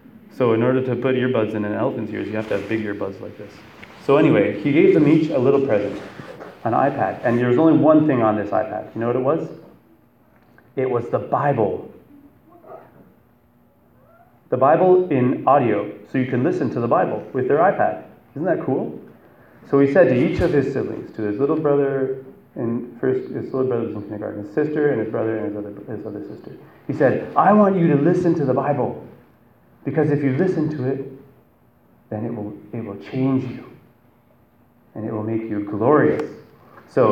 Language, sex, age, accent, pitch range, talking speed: English, male, 30-49, American, 110-140 Hz, 195 wpm